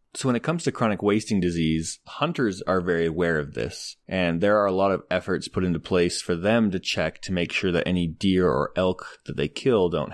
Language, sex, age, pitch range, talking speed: English, male, 20-39, 90-110 Hz, 235 wpm